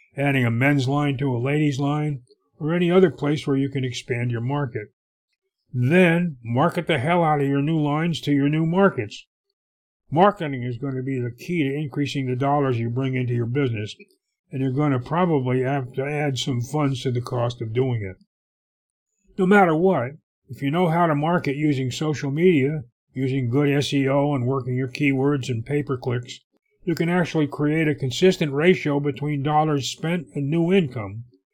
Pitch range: 130-155 Hz